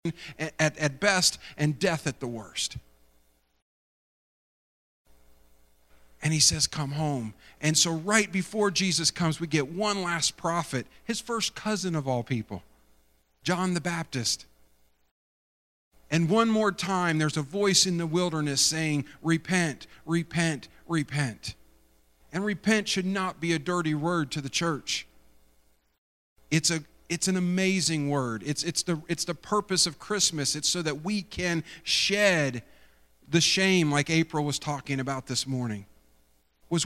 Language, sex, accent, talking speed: English, male, American, 145 wpm